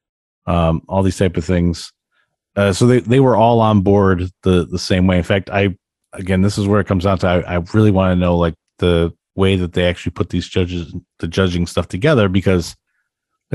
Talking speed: 215 wpm